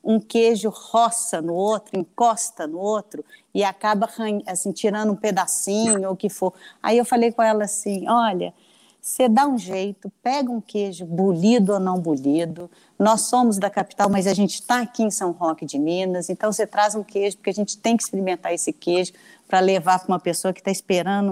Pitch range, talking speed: 185-220 Hz, 200 wpm